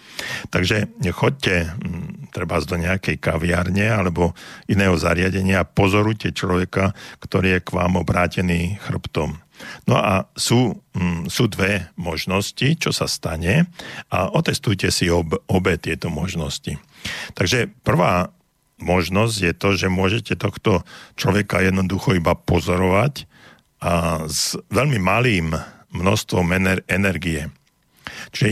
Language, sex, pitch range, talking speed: Slovak, male, 85-100 Hz, 110 wpm